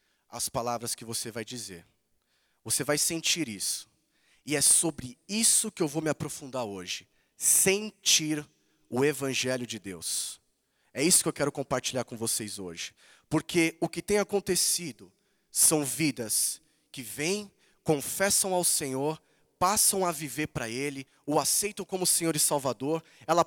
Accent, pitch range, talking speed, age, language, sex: Brazilian, 130-200 Hz, 150 wpm, 20-39, Portuguese, male